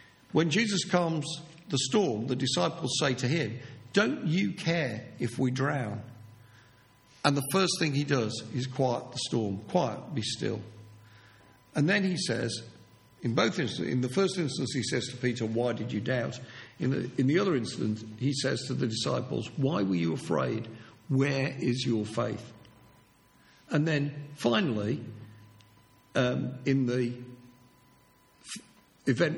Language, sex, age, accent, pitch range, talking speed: English, male, 50-69, British, 115-150 Hz, 150 wpm